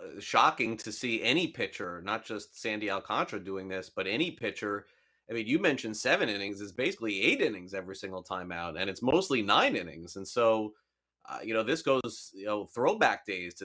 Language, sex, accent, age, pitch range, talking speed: English, male, American, 30-49, 105-135 Hz, 200 wpm